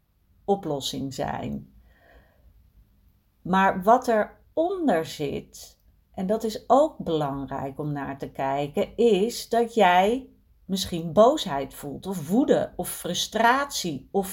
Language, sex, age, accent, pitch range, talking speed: Dutch, female, 40-59, Dutch, 140-200 Hz, 110 wpm